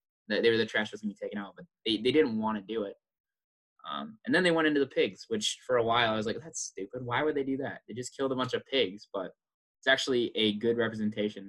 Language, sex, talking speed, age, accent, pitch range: English, male, 275 wpm, 20-39, American, 110-135 Hz